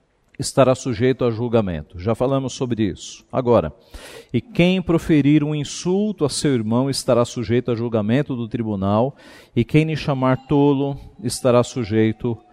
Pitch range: 120-155 Hz